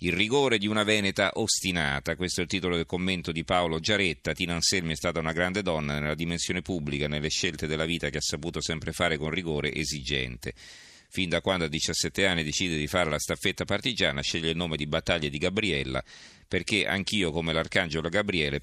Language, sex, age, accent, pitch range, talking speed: Italian, male, 40-59, native, 80-95 Hz, 195 wpm